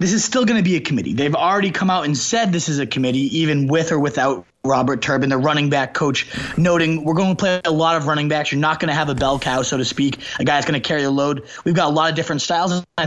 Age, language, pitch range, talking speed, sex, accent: 20-39, English, 140-180 Hz, 295 wpm, male, American